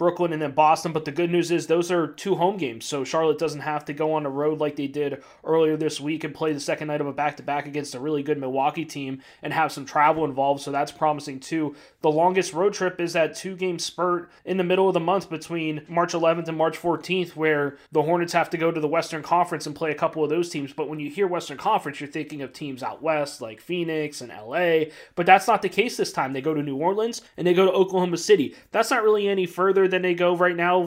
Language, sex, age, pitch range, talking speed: English, male, 20-39, 150-175 Hz, 260 wpm